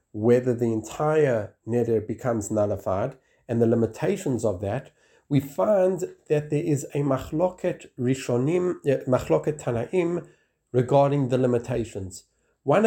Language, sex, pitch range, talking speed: English, male, 125-155 Hz, 115 wpm